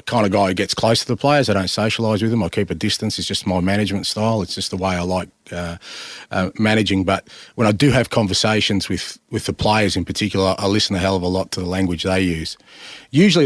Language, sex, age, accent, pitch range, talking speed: English, male, 40-59, Australian, 95-115 Hz, 255 wpm